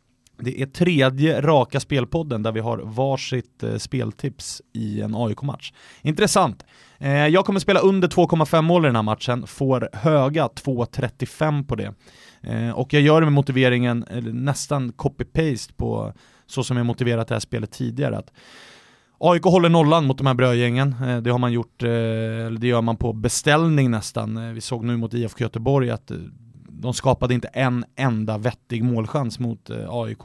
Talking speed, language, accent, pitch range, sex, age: 155 wpm, English, Swedish, 115-140 Hz, male, 30-49